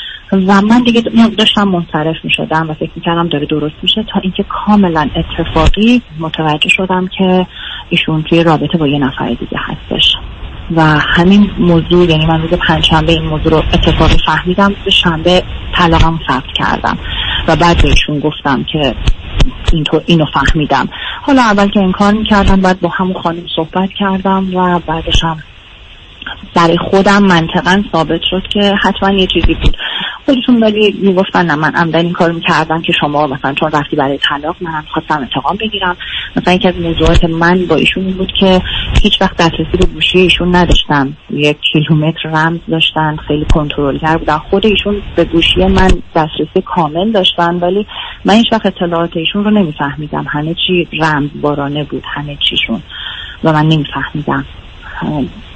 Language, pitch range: Persian, 155-190 Hz